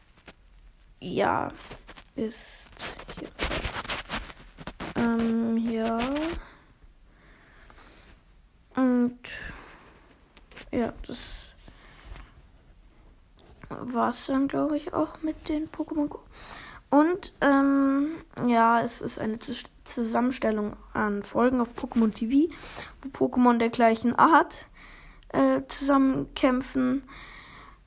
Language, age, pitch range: German, 20-39, 225-270 Hz